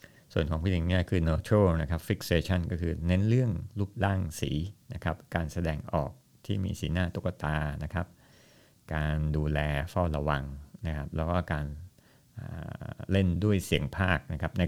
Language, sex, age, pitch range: Thai, male, 60-79, 80-100 Hz